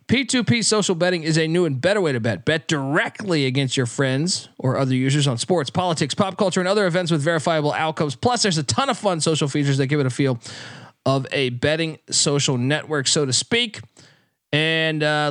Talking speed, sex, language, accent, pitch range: 210 wpm, male, English, American, 135-195 Hz